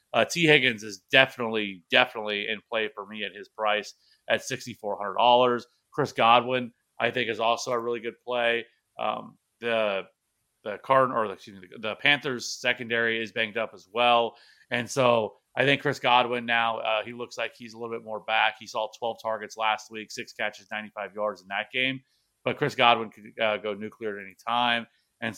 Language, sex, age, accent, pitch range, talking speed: English, male, 30-49, American, 110-125 Hz, 205 wpm